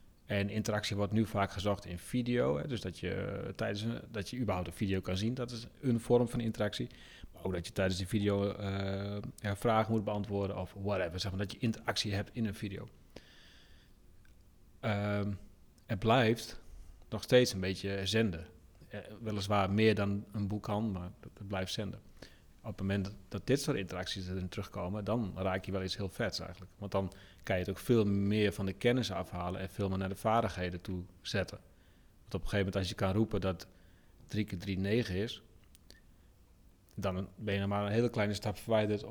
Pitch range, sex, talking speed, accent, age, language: 95-110 Hz, male, 190 wpm, Dutch, 40-59, Dutch